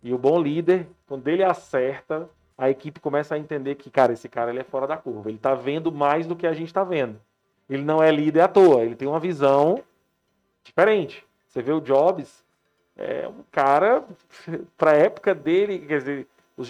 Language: Portuguese